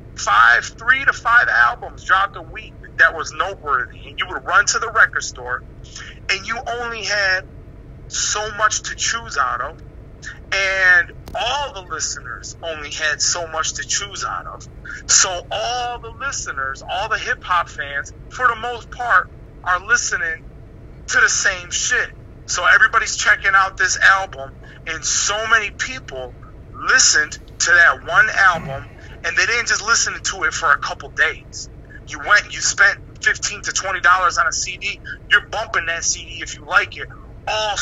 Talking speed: 165 wpm